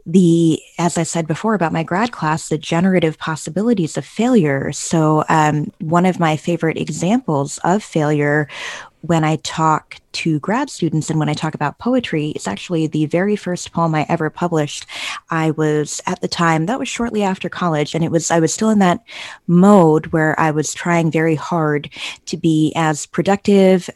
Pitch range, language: 155-180 Hz, English